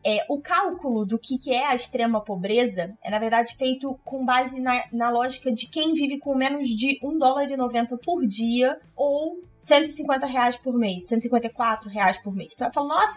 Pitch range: 230-290 Hz